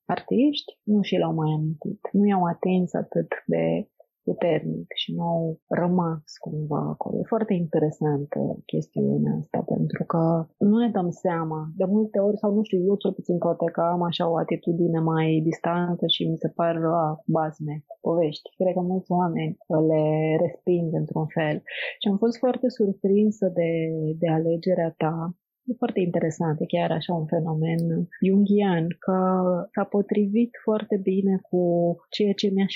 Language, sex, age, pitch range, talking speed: Romanian, female, 30-49, 165-205 Hz, 160 wpm